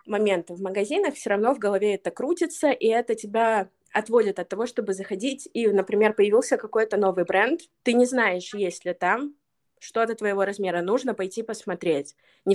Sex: female